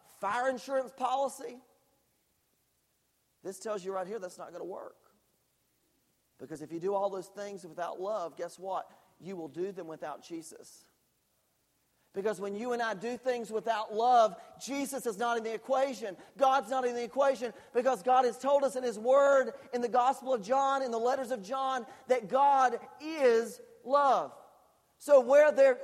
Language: English